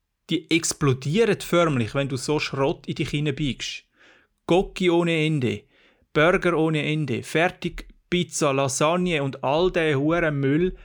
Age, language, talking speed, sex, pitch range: 30-49, German, 135 wpm, male, 125-170 Hz